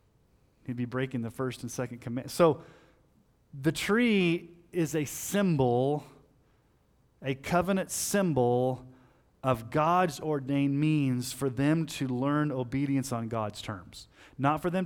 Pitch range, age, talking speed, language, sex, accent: 115-155 Hz, 30-49, 130 wpm, English, male, American